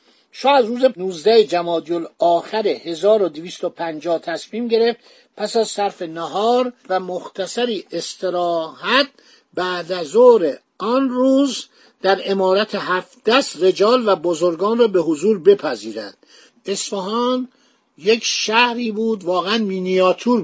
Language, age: Persian, 50-69